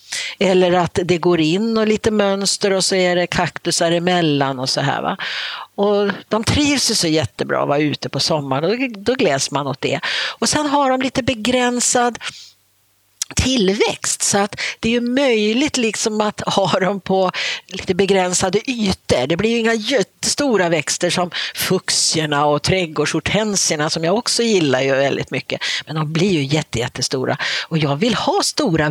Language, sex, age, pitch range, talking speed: Swedish, female, 50-69, 145-210 Hz, 170 wpm